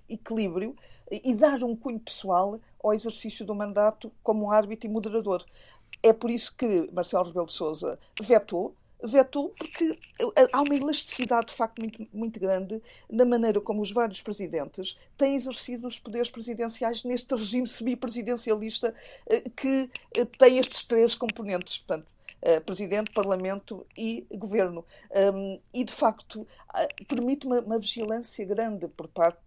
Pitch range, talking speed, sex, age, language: 195-250 Hz, 135 wpm, female, 50-69, Portuguese